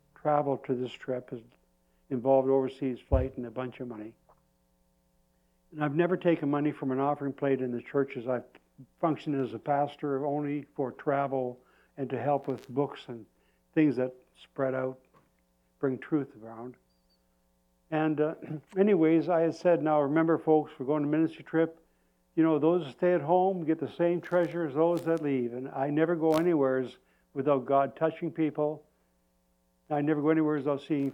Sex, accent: male, American